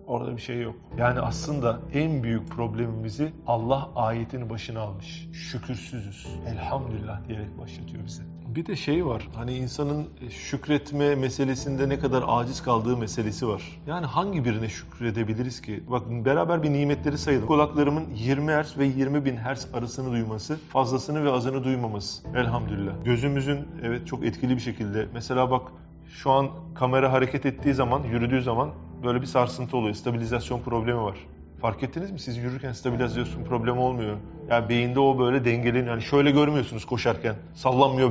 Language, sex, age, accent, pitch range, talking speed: Turkish, male, 40-59, native, 115-145 Hz, 155 wpm